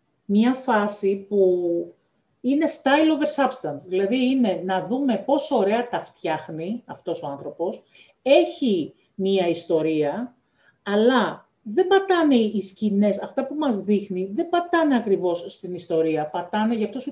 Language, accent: Greek, native